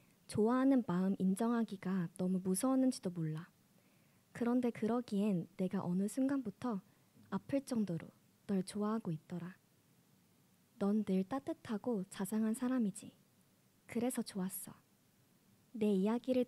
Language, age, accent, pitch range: Korean, 20-39, native, 190-245 Hz